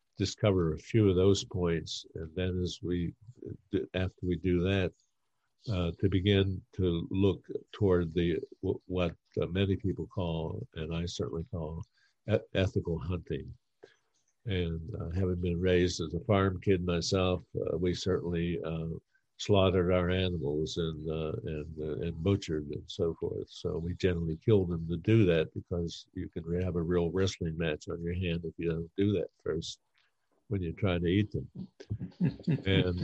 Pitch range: 85-95 Hz